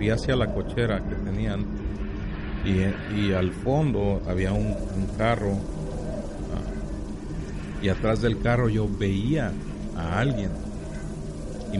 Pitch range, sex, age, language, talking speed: 95-115 Hz, male, 40-59, Spanish, 110 wpm